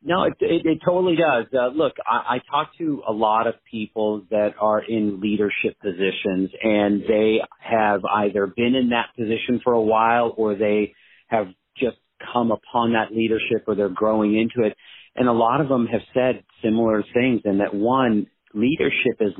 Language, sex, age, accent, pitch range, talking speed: English, male, 40-59, American, 100-115 Hz, 185 wpm